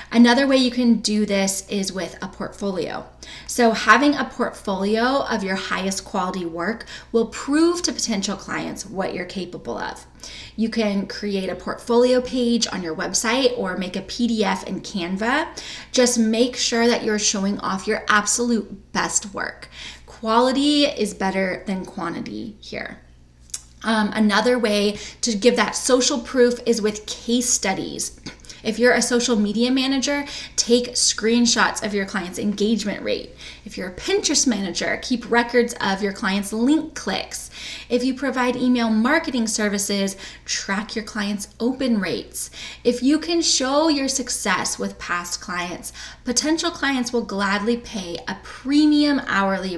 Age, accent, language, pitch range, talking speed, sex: 20-39, American, English, 200-250 Hz, 150 wpm, female